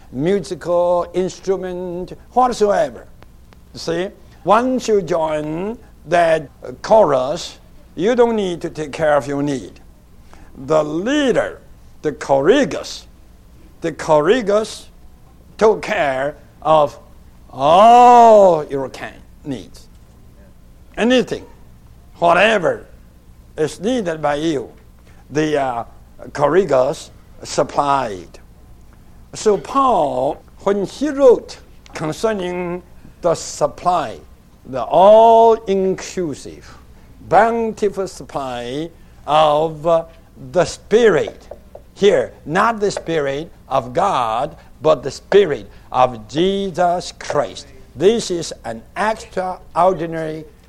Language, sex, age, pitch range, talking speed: English, male, 60-79, 120-205 Hz, 85 wpm